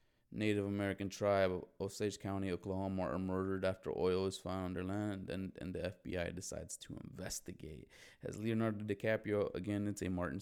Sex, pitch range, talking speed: male, 95-110 Hz, 180 wpm